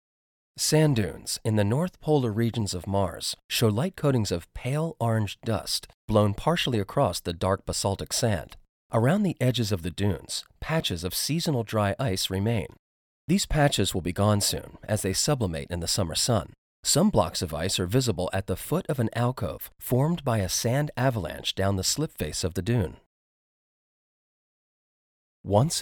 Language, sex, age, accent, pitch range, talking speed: English, male, 30-49, American, 95-130 Hz, 170 wpm